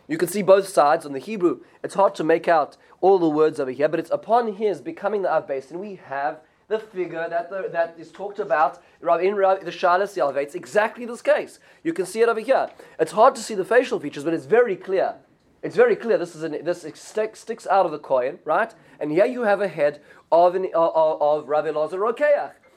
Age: 20-39